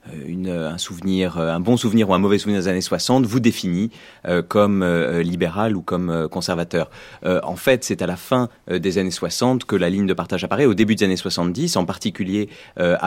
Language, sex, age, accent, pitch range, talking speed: French, male, 30-49, French, 90-110 Hz, 215 wpm